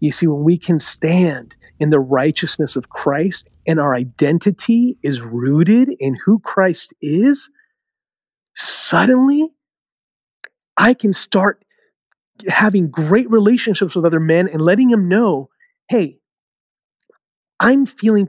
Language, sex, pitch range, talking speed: English, male, 160-220 Hz, 120 wpm